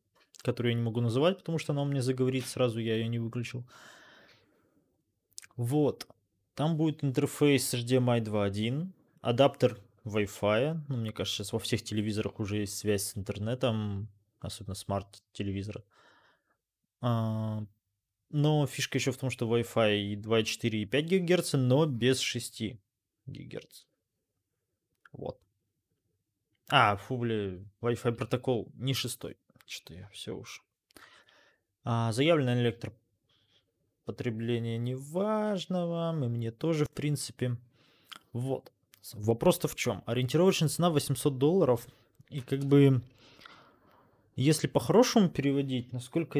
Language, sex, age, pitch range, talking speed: Russian, male, 20-39, 110-140 Hz, 120 wpm